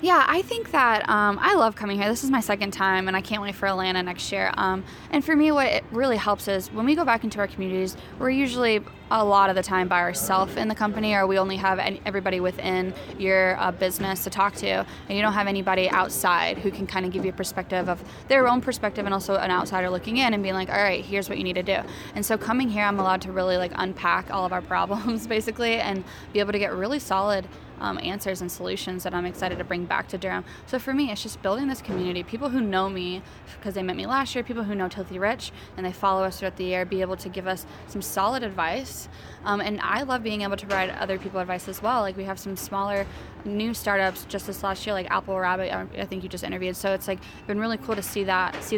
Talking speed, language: 260 wpm, English